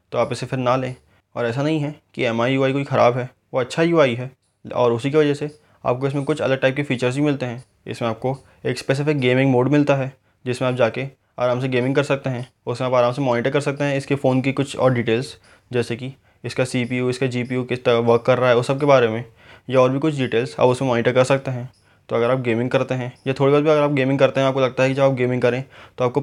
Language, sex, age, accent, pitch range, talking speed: Hindi, male, 20-39, native, 120-135 Hz, 265 wpm